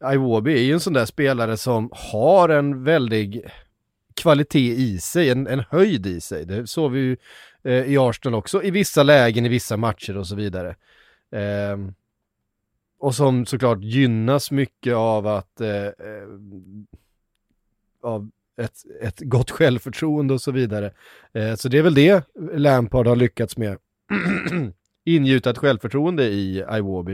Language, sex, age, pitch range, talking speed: Swedish, male, 30-49, 105-135 Hz, 150 wpm